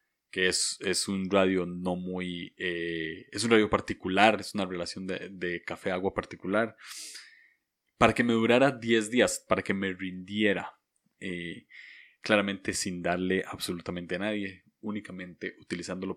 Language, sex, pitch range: Spanish, male, 90-115 Hz